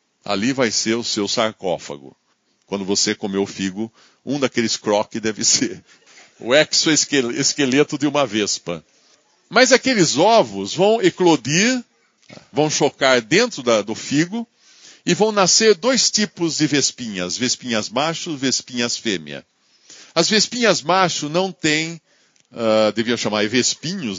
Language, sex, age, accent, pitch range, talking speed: Portuguese, male, 60-79, Brazilian, 115-175 Hz, 135 wpm